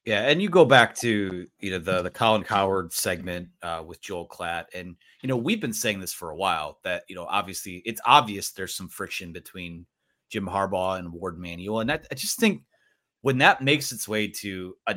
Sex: male